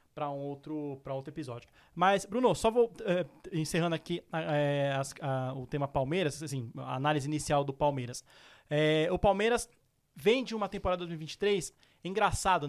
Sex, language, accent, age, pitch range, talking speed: male, Portuguese, Brazilian, 20-39, 155-200 Hz, 125 wpm